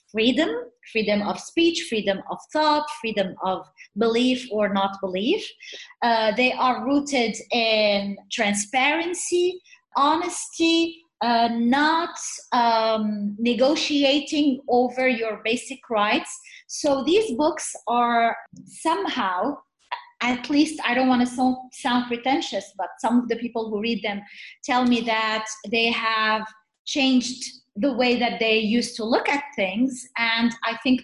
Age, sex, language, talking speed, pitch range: 30-49, female, English, 130 wpm, 210-270 Hz